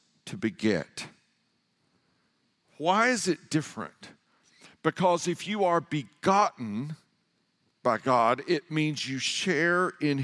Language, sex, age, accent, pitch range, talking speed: English, male, 50-69, American, 150-190 Hz, 105 wpm